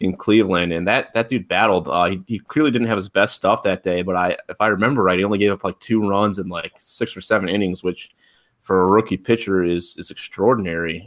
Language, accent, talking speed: English, American, 245 wpm